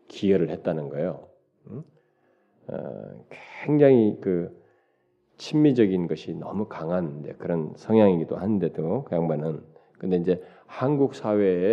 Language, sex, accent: Korean, male, native